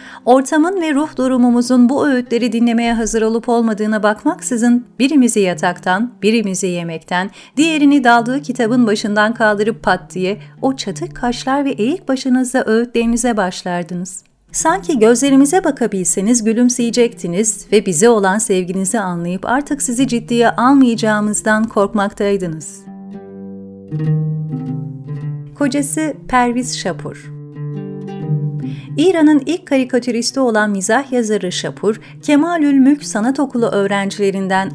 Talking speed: 100 wpm